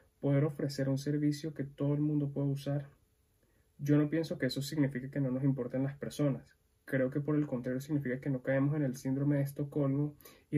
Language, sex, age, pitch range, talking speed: Spanish, male, 20-39, 130-145 Hz, 210 wpm